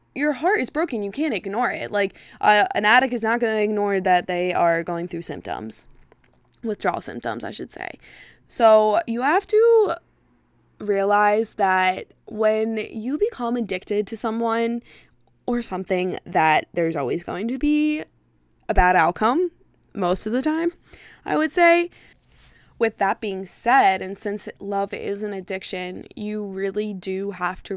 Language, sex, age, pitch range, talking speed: English, female, 20-39, 180-225 Hz, 160 wpm